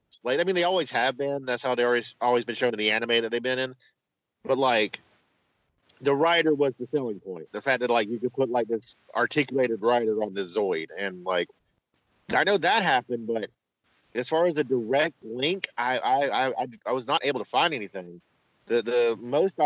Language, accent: English, American